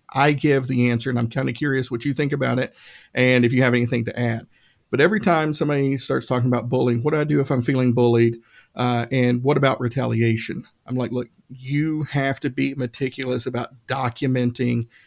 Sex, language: male, English